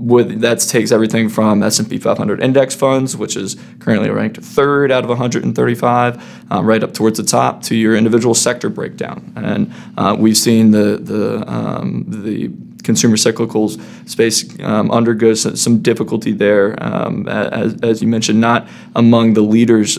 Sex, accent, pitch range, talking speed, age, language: male, American, 110-120 Hz, 160 wpm, 20-39, English